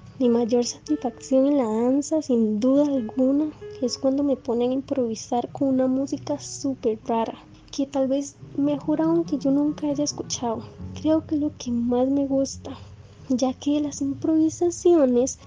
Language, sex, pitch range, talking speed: Spanish, female, 255-305 Hz, 160 wpm